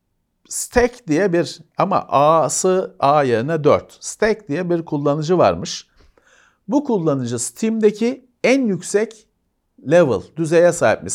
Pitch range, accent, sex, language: 135-210 Hz, native, male, Turkish